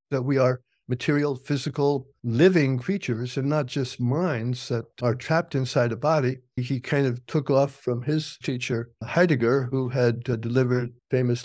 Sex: male